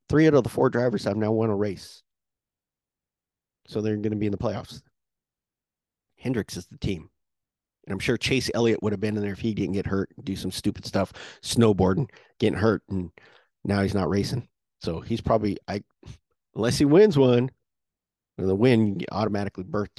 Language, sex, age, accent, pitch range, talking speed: English, male, 40-59, American, 95-120 Hz, 190 wpm